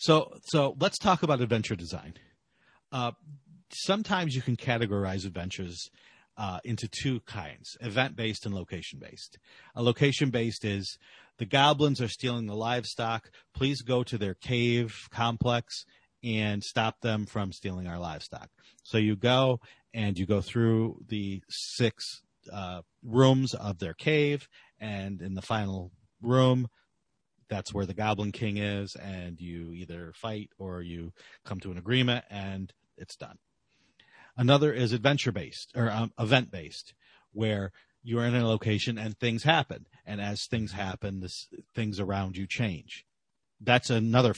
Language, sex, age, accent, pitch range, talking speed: English, male, 40-59, American, 100-125 Hz, 140 wpm